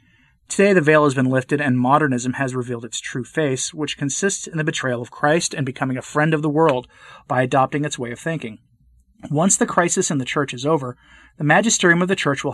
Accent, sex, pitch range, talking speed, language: American, male, 125-160 Hz, 225 wpm, English